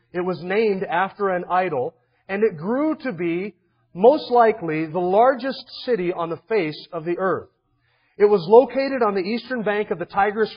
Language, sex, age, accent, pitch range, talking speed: English, male, 40-59, American, 165-220 Hz, 180 wpm